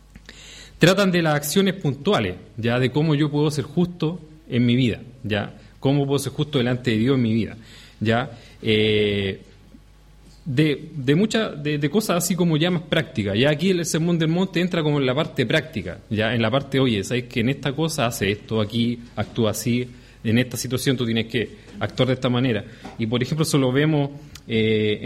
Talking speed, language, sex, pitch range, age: 195 wpm, English, male, 110-150 Hz, 30-49